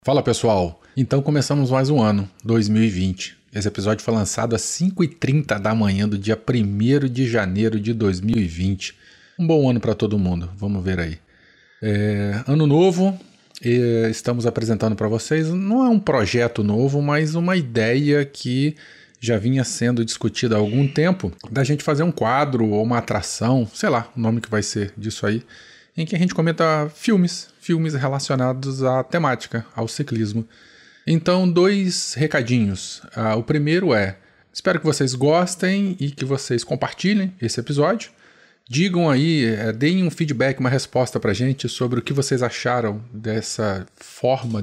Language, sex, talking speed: Portuguese, male, 160 wpm